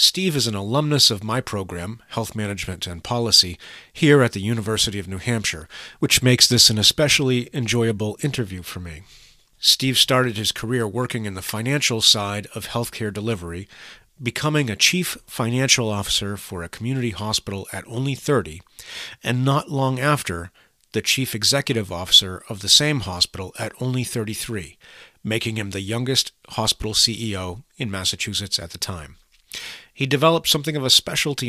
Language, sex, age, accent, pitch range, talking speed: English, male, 40-59, American, 100-130 Hz, 160 wpm